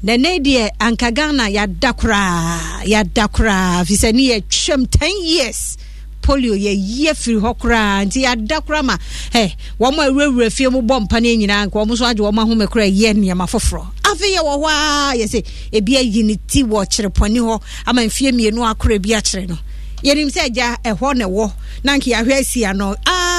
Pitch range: 215-270 Hz